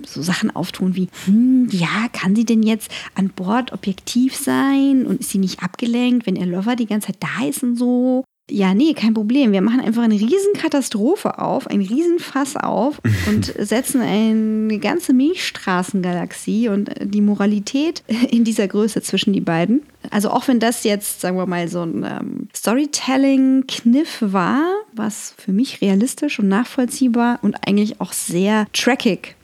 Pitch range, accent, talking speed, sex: 195-265 Hz, German, 160 wpm, female